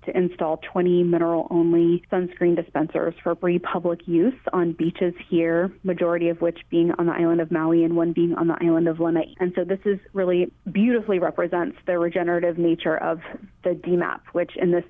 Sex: female